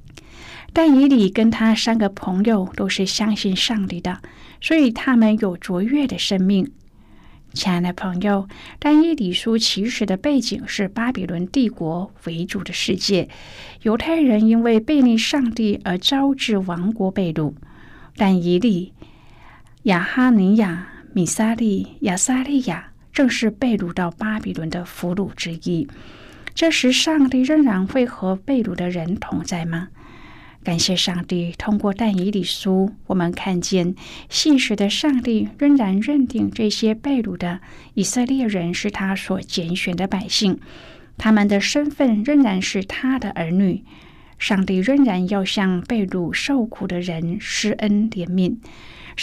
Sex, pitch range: female, 185-245 Hz